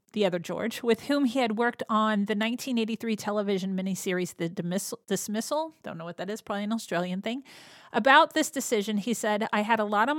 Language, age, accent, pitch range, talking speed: English, 40-59, American, 195-240 Hz, 200 wpm